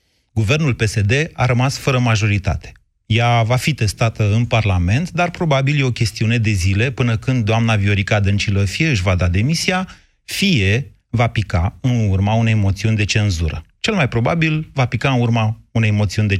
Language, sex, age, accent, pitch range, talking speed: Romanian, male, 30-49, native, 110-140 Hz, 175 wpm